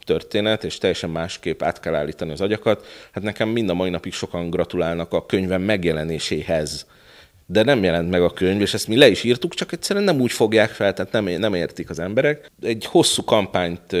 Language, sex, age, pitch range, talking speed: Hungarian, male, 30-49, 85-110 Hz, 200 wpm